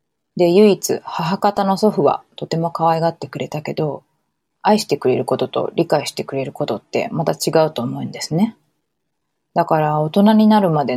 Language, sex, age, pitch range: Japanese, female, 20-39, 150-200 Hz